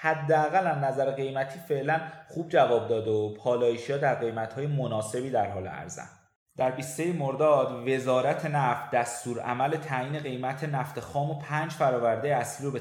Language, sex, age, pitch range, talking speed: Persian, male, 30-49, 120-155 Hz, 150 wpm